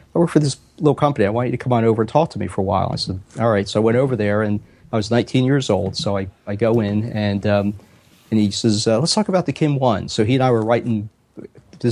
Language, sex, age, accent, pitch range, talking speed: English, male, 40-59, American, 105-120 Hz, 295 wpm